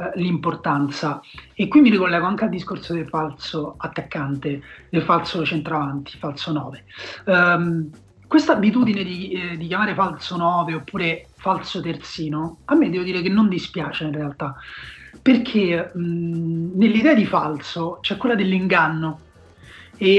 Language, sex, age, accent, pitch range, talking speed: Italian, male, 30-49, native, 160-195 Hz, 140 wpm